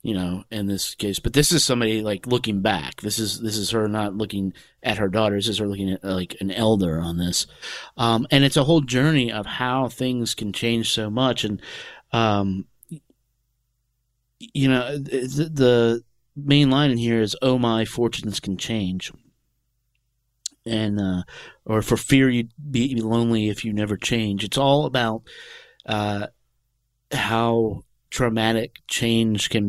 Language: English